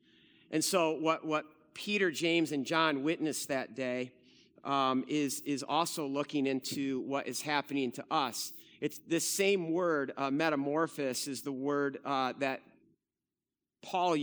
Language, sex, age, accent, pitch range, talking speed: English, male, 50-69, American, 135-165 Hz, 145 wpm